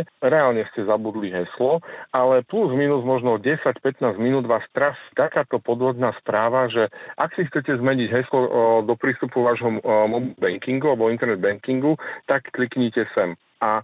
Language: Slovak